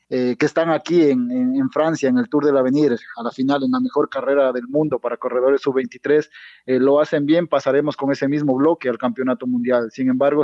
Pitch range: 130-150 Hz